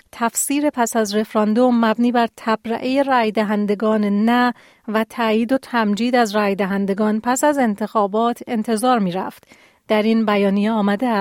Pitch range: 210-240 Hz